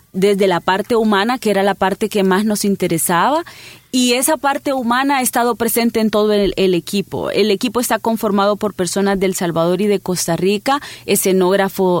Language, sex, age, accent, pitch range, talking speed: Spanish, female, 30-49, Colombian, 180-215 Hz, 185 wpm